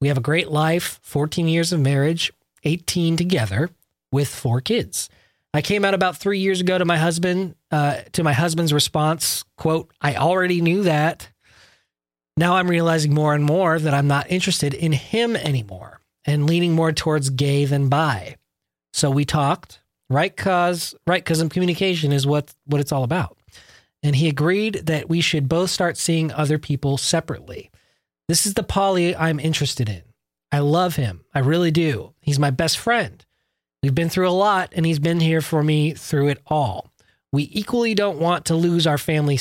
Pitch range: 140-175 Hz